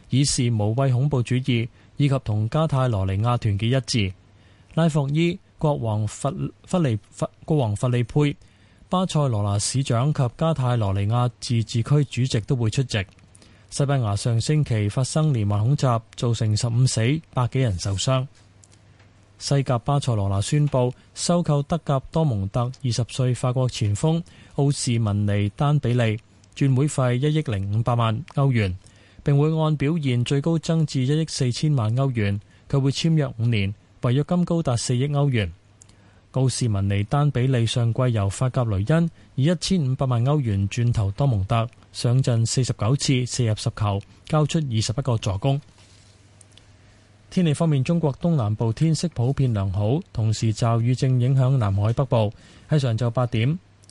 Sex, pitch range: male, 105-140 Hz